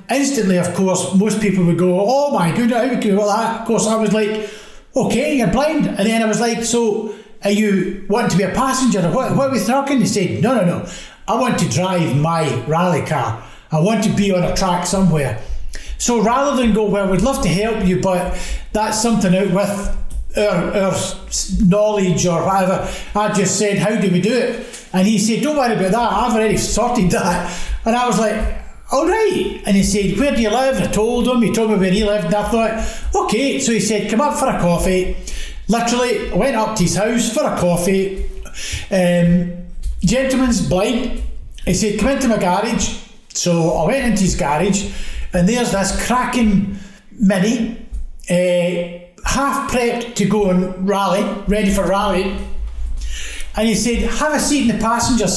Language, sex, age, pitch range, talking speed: English, male, 60-79, 185-230 Hz, 195 wpm